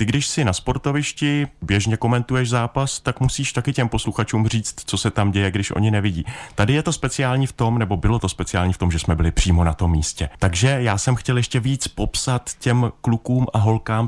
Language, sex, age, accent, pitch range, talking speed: Czech, male, 30-49, native, 95-125 Hz, 215 wpm